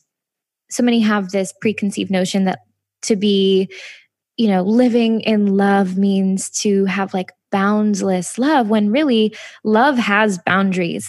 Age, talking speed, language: 10-29, 135 wpm, English